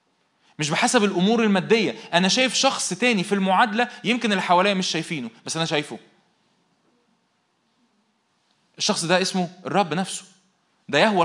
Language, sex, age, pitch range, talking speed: Arabic, male, 20-39, 160-210 Hz, 130 wpm